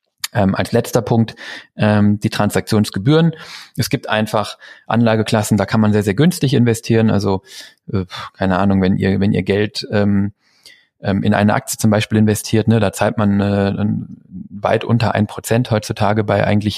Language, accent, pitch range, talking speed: German, German, 105-125 Hz, 160 wpm